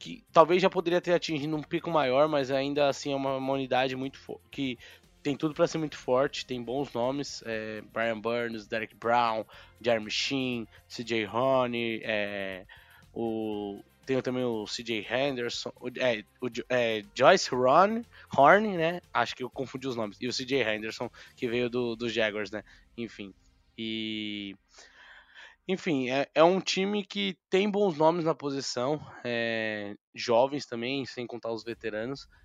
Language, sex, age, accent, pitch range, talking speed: Portuguese, male, 20-39, Brazilian, 115-145 Hz, 160 wpm